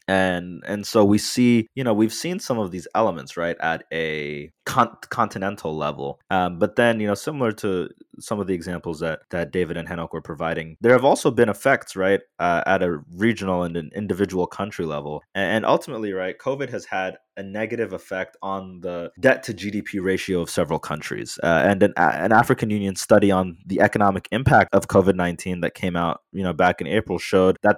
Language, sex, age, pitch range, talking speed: English, male, 20-39, 90-115 Hz, 200 wpm